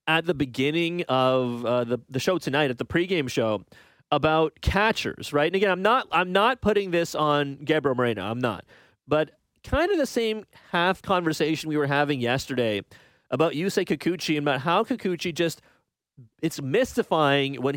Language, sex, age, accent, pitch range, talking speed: English, male, 30-49, American, 130-175 Hz, 175 wpm